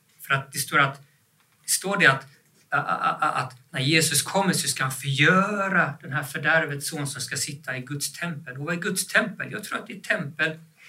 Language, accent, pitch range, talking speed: Swedish, native, 140-165 Hz, 220 wpm